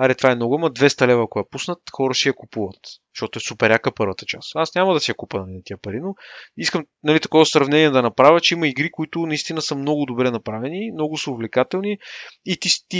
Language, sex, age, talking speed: Bulgarian, male, 30-49, 230 wpm